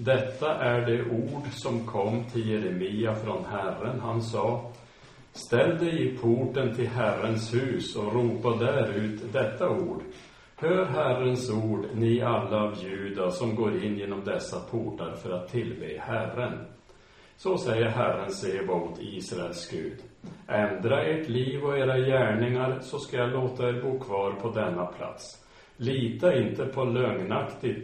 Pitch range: 110-130 Hz